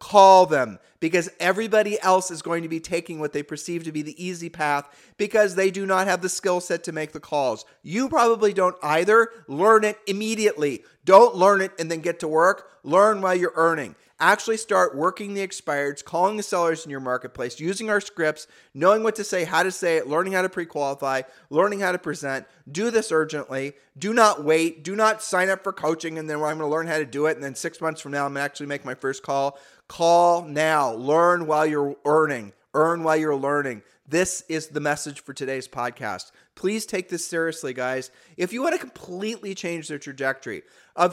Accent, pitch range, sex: American, 150-195 Hz, male